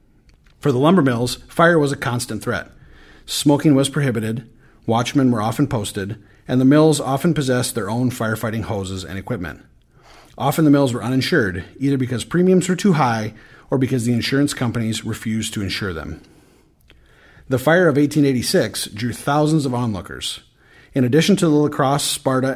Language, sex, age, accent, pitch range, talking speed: English, male, 40-59, American, 105-145 Hz, 165 wpm